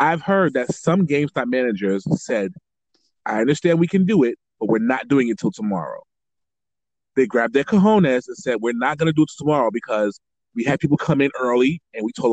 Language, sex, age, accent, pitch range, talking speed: English, male, 30-49, American, 125-180 Hz, 210 wpm